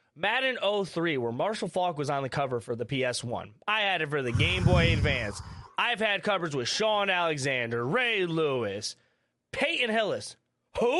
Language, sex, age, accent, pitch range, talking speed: English, male, 20-39, American, 145-205 Hz, 170 wpm